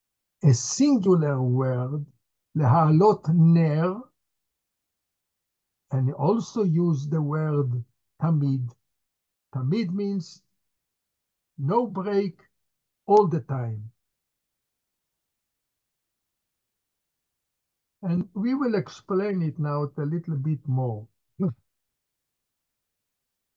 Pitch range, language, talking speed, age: 135-210 Hz, English, 70 wpm, 60-79